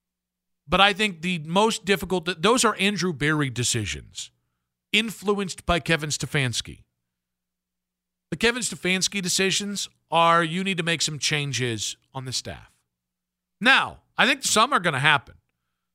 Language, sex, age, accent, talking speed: English, male, 50-69, American, 140 wpm